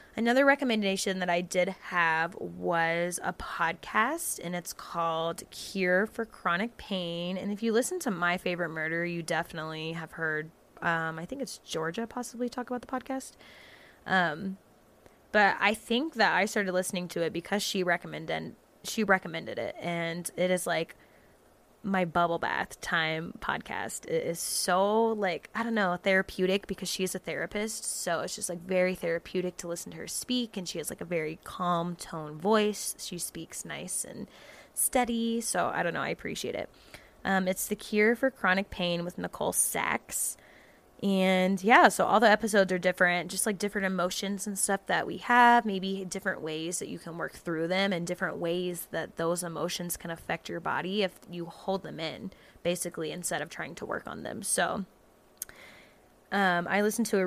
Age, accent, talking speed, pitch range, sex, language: 20-39, American, 180 wpm, 175-205 Hz, female, English